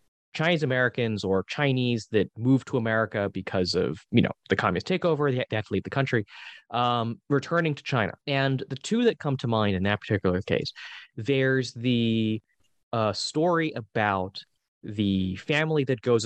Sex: male